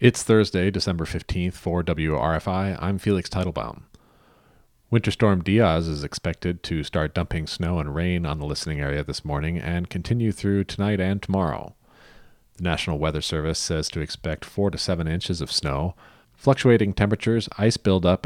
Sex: male